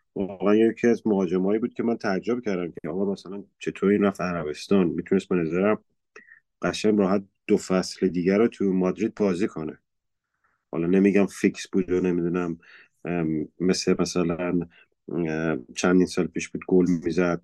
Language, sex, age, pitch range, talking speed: Persian, male, 30-49, 85-100 Hz, 140 wpm